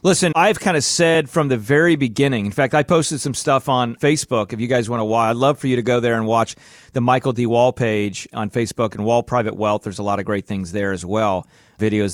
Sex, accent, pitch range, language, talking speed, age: male, American, 110-150 Hz, English, 260 wpm, 40-59